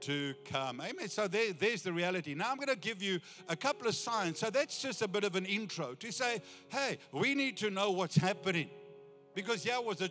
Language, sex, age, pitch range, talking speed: English, male, 50-69, 150-195 Hz, 225 wpm